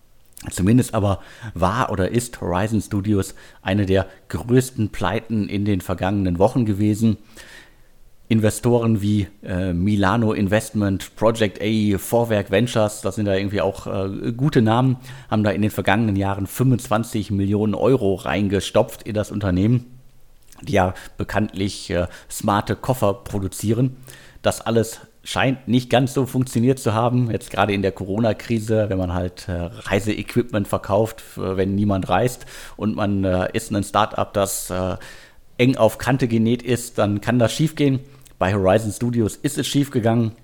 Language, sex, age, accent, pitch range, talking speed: German, male, 50-69, German, 100-120 Hz, 140 wpm